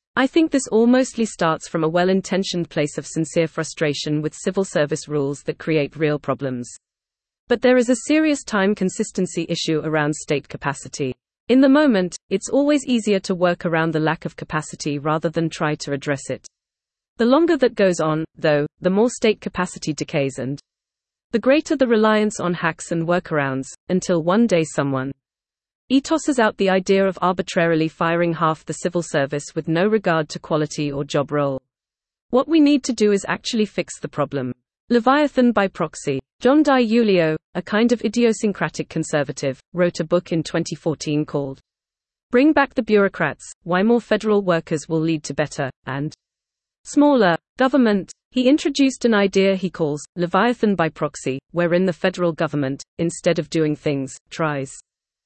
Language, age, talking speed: English, 30-49, 165 wpm